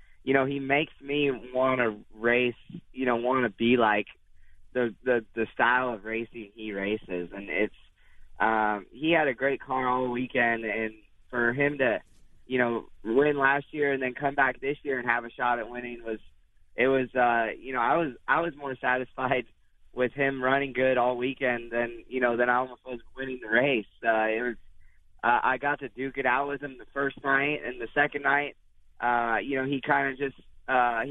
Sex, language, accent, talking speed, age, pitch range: male, English, American, 210 wpm, 20-39, 115-135 Hz